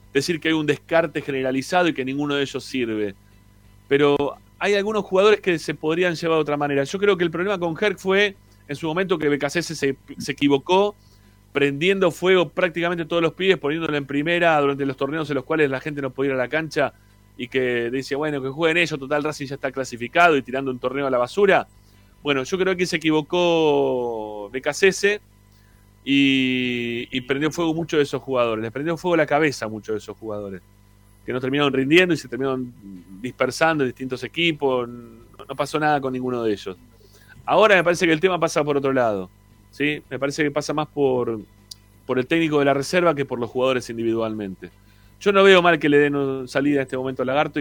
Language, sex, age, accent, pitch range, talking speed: Spanish, male, 30-49, Argentinian, 115-155 Hz, 210 wpm